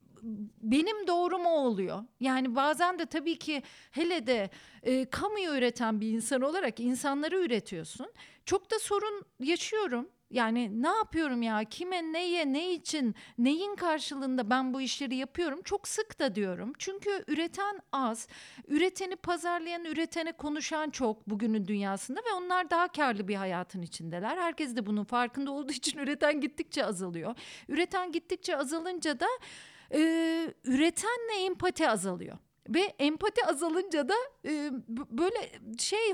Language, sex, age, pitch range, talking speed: Turkish, female, 40-59, 240-345 Hz, 135 wpm